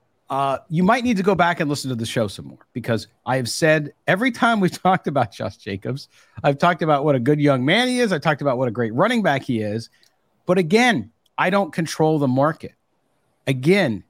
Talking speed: 225 wpm